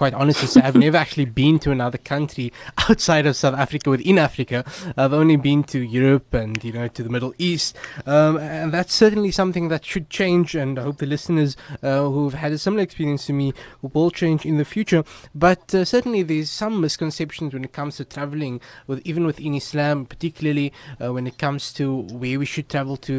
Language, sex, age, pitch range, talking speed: English, male, 20-39, 130-160 Hz, 205 wpm